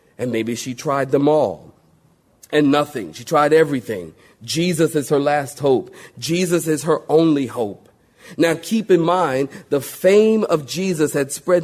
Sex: male